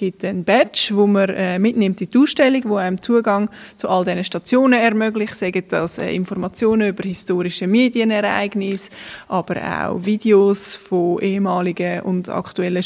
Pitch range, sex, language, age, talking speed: 185-225 Hz, female, German, 20-39, 145 wpm